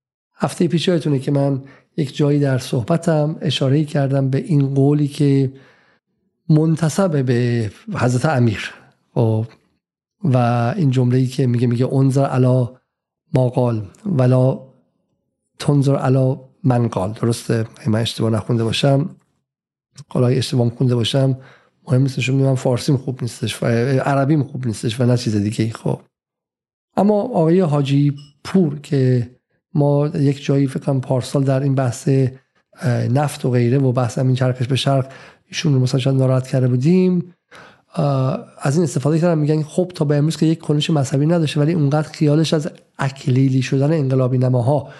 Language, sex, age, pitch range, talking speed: Persian, male, 50-69, 130-155 Hz, 145 wpm